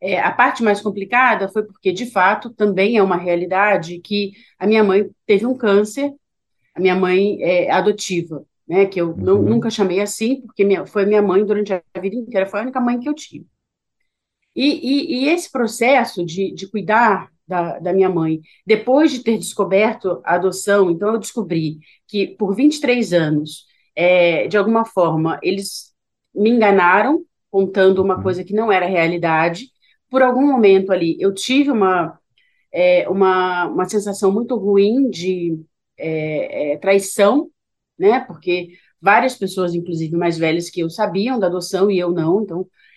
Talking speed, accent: 160 wpm, Brazilian